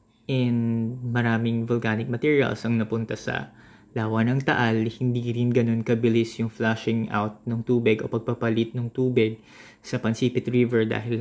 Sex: male